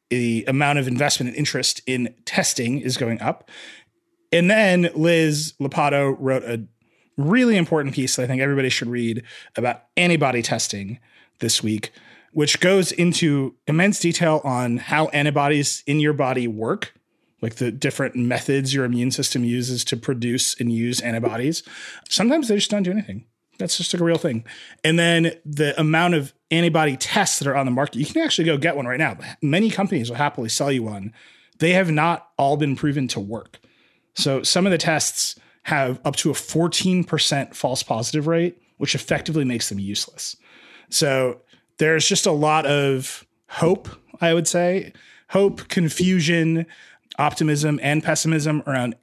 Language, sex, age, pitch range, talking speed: English, male, 30-49, 125-165 Hz, 170 wpm